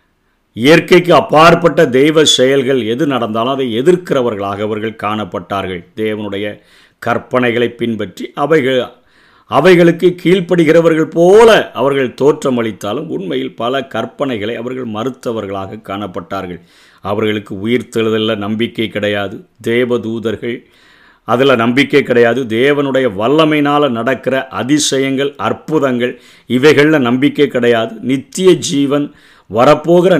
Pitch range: 105-140 Hz